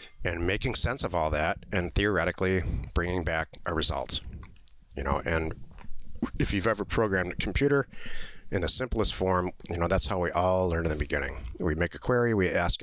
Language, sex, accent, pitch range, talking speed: English, male, American, 80-100 Hz, 190 wpm